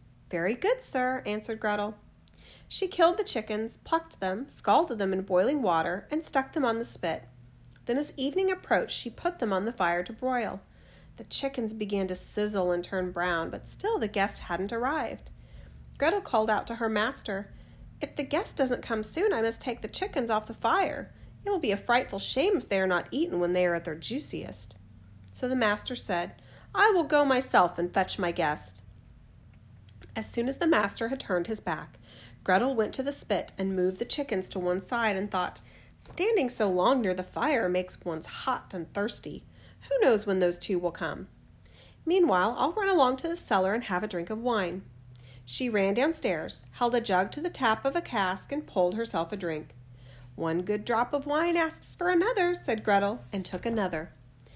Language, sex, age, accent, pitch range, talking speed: English, female, 40-59, American, 175-260 Hz, 200 wpm